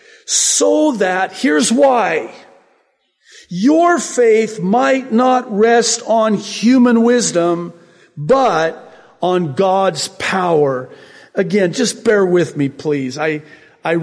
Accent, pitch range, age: American, 140-185 Hz, 50-69